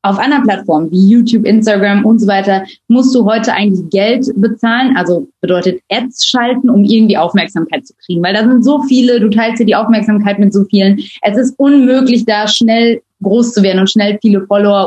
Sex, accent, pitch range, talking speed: female, German, 195-235 Hz, 200 wpm